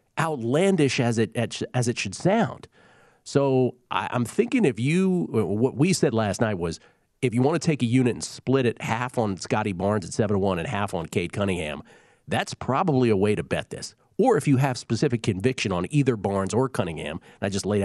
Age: 40-59